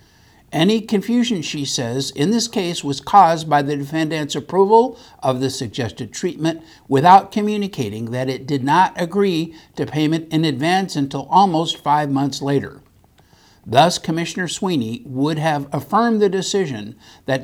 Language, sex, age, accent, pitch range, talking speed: English, male, 60-79, American, 140-195 Hz, 145 wpm